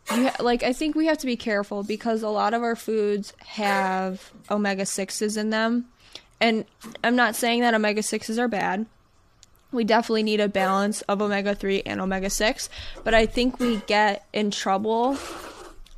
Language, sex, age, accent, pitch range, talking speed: English, female, 10-29, American, 195-225 Hz, 165 wpm